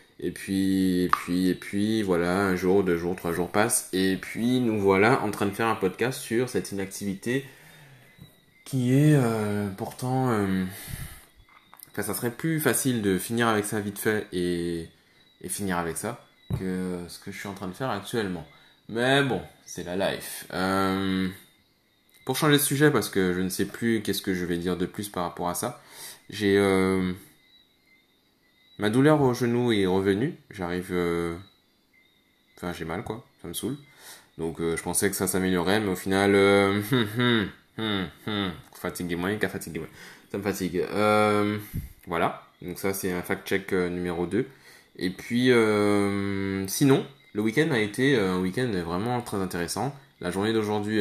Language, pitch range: French, 90-115 Hz